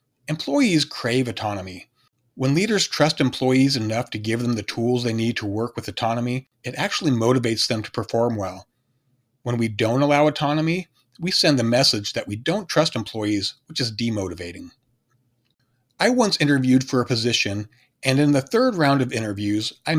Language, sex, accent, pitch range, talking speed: English, male, American, 115-135 Hz, 170 wpm